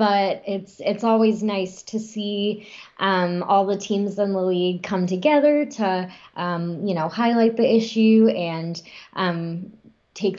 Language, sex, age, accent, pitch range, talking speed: English, female, 20-39, American, 180-230 Hz, 150 wpm